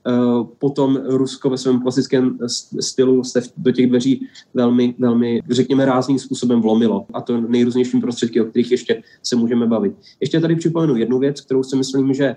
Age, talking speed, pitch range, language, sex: 20-39, 170 wpm, 120-135 Hz, Slovak, male